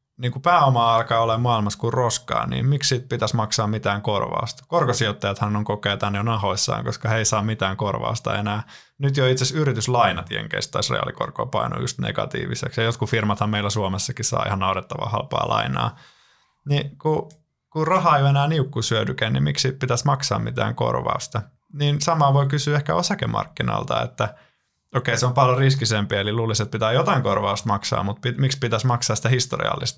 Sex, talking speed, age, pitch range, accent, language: male, 170 wpm, 20-39, 100-130 Hz, native, Finnish